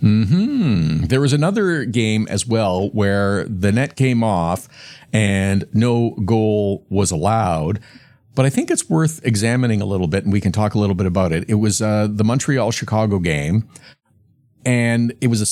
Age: 50-69